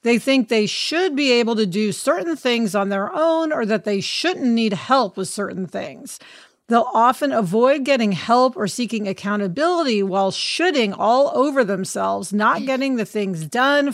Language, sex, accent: English, female, American